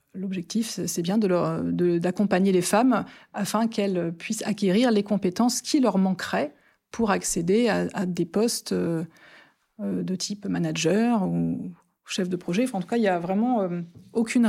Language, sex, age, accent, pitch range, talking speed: French, female, 30-49, French, 175-215 Hz, 165 wpm